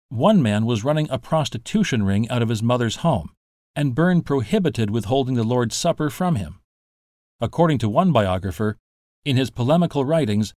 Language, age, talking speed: English, 50-69, 165 wpm